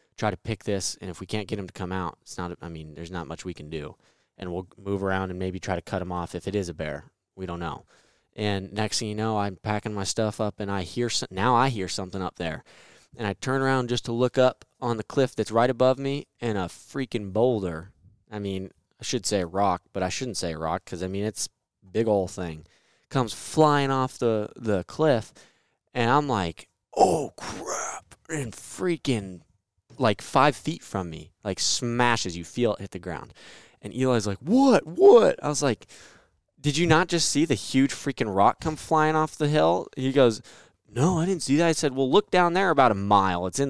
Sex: male